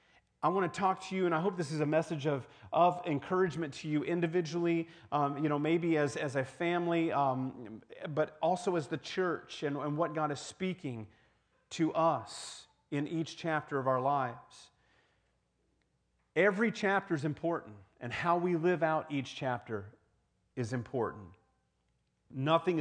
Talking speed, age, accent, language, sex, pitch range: 160 wpm, 40-59, American, English, male, 135-175 Hz